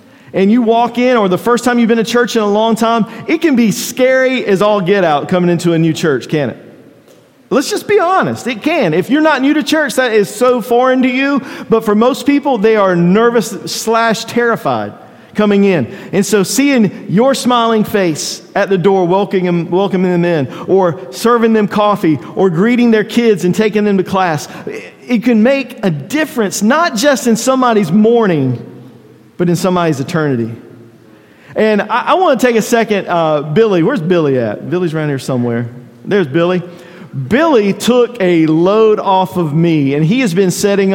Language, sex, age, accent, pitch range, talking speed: English, male, 50-69, American, 175-235 Hz, 195 wpm